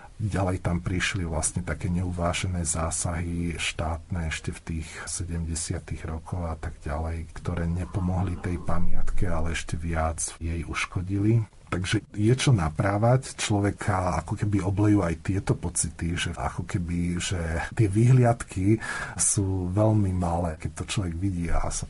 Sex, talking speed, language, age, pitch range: male, 140 wpm, Slovak, 50-69, 85-105 Hz